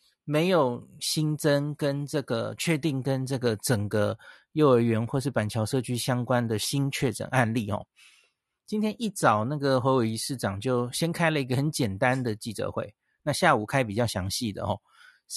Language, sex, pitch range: Chinese, male, 120-150 Hz